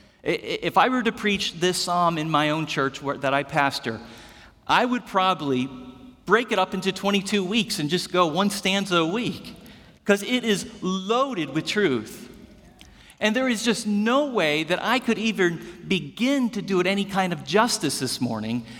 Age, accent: 40-59, American